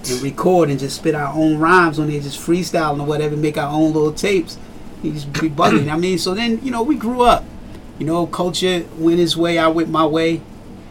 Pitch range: 125-155 Hz